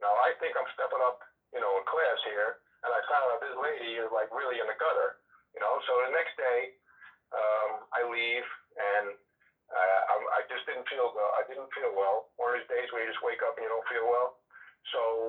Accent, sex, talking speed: American, male, 225 wpm